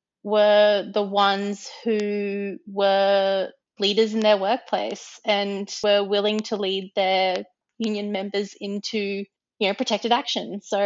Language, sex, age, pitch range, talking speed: English, female, 20-39, 190-220 Hz, 125 wpm